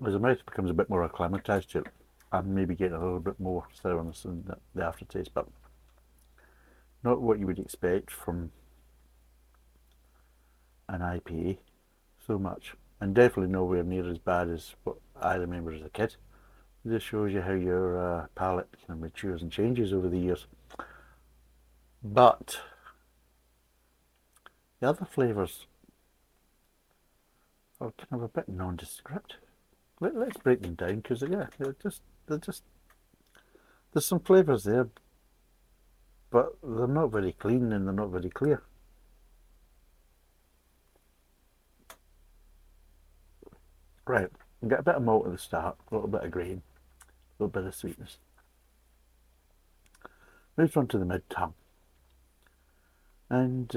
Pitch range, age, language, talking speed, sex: 65-100 Hz, 60-79, English, 130 wpm, male